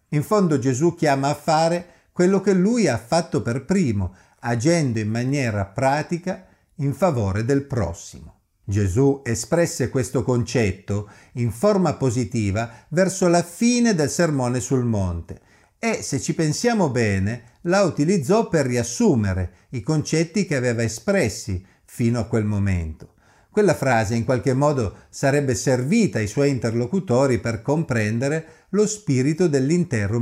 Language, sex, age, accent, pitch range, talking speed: Italian, male, 50-69, native, 110-155 Hz, 135 wpm